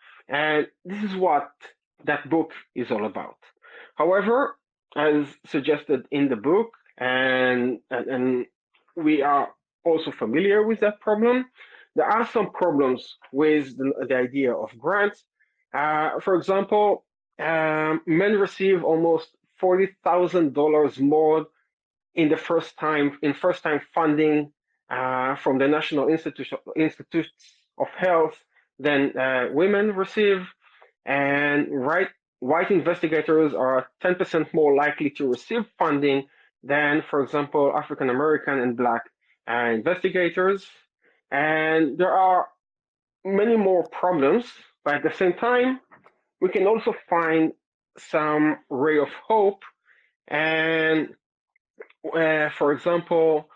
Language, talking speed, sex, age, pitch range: English, 115 wpm, male, 30-49, 145-180 Hz